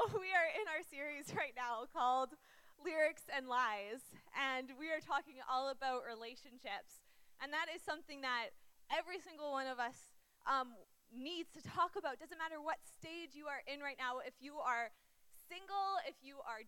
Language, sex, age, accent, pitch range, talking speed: English, female, 20-39, American, 255-310 Hz, 175 wpm